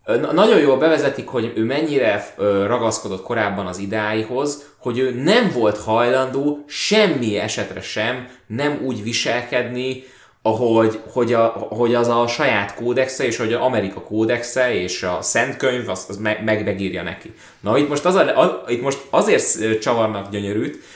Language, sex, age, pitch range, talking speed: Hungarian, male, 20-39, 100-120 Hz, 155 wpm